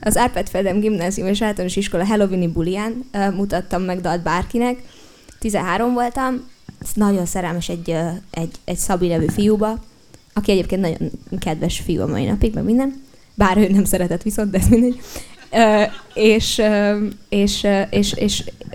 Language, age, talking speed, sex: Hungarian, 20-39, 150 wpm, female